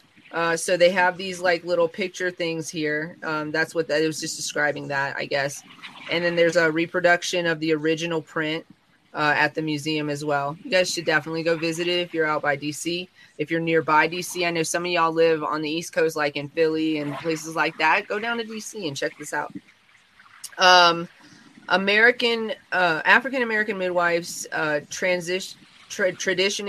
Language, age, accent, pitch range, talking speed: English, 20-39, American, 160-195 Hz, 190 wpm